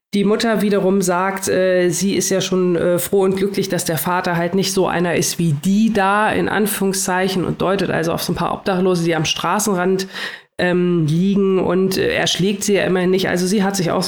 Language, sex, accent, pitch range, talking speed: German, female, German, 180-205 Hz, 220 wpm